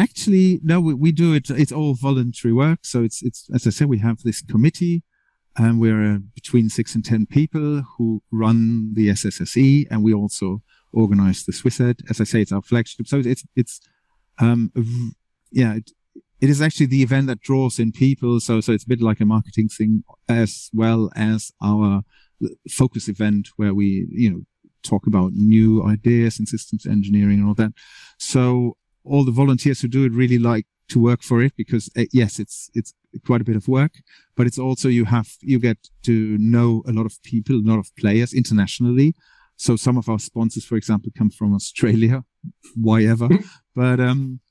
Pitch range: 110-130 Hz